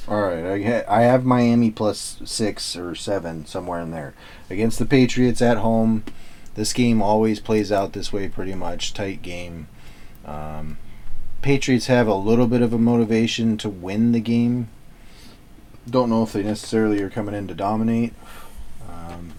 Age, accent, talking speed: 30-49, American, 160 wpm